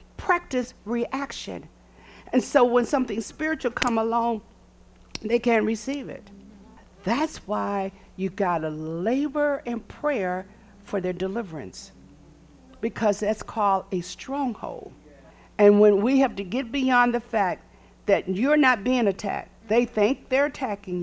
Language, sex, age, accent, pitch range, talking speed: English, female, 50-69, American, 190-255 Hz, 135 wpm